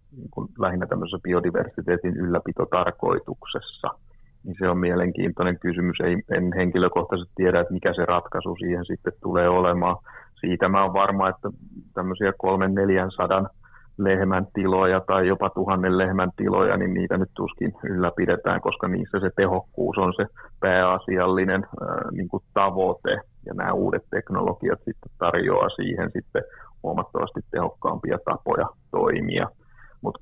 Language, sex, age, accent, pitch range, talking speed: Finnish, male, 30-49, native, 90-95 Hz, 120 wpm